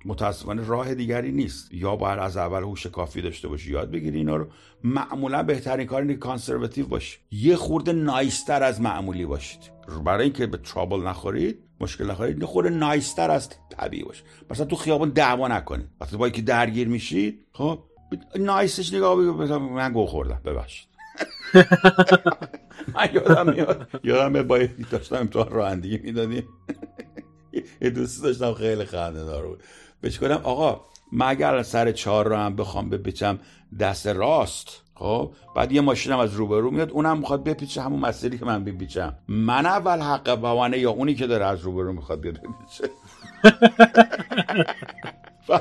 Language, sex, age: Persian, male, 50-69